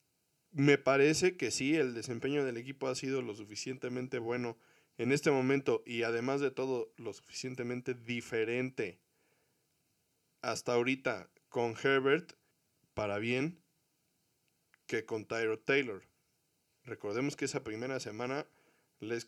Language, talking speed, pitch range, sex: Spanish, 120 wpm, 120-165 Hz, male